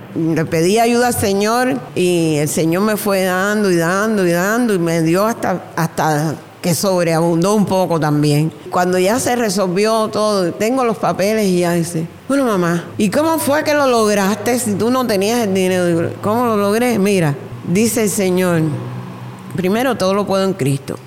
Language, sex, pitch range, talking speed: Spanish, female, 180-240 Hz, 180 wpm